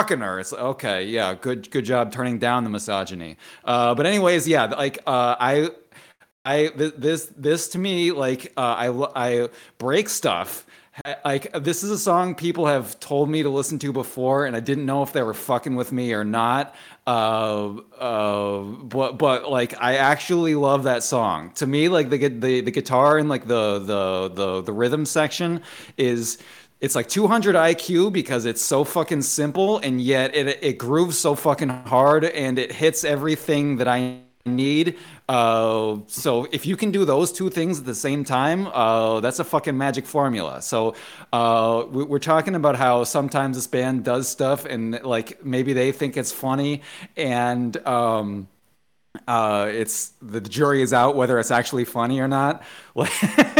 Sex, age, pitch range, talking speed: male, 30-49, 120-150 Hz, 175 wpm